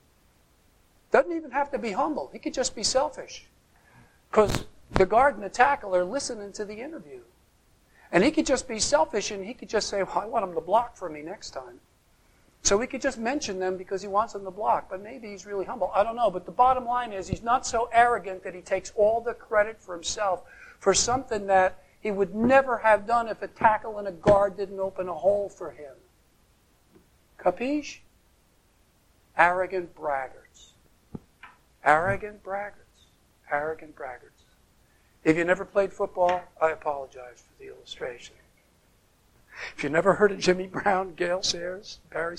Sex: male